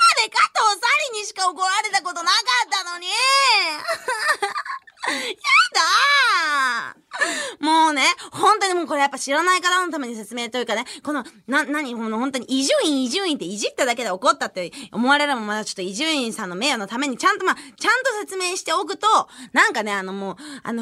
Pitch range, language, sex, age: 230-365 Hz, Japanese, female, 20-39